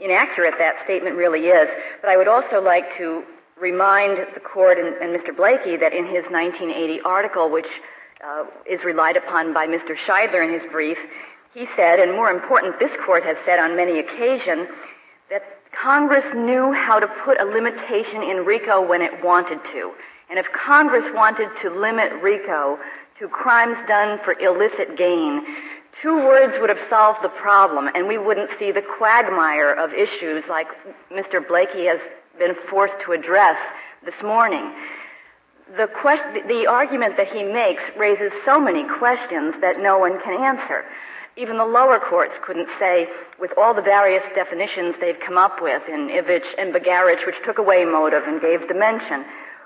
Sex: female